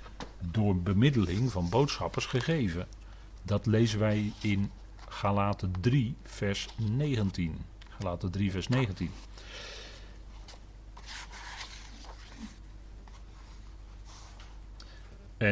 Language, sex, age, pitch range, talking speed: Dutch, male, 40-59, 95-115 Hz, 65 wpm